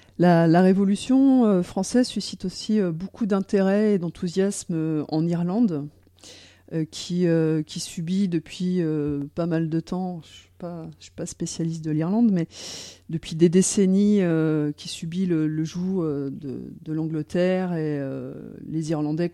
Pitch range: 150-180 Hz